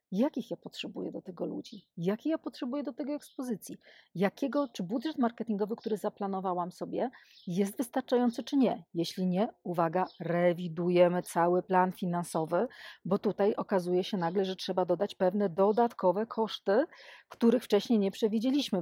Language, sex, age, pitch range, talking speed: Polish, female, 40-59, 185-235 Hz, 145 wpm